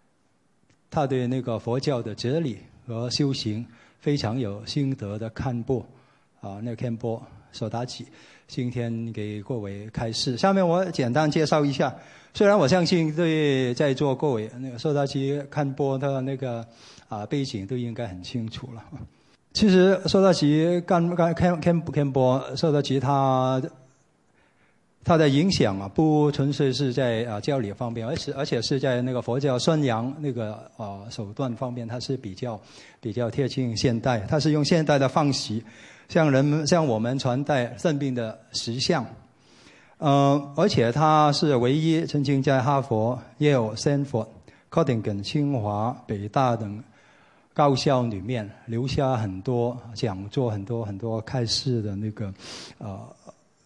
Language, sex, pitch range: English, male, 115-145 Hz